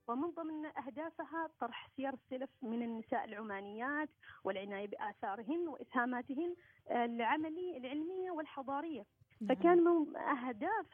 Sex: female